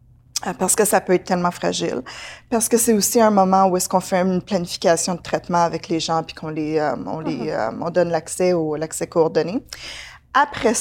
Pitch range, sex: 170-200 Hz, female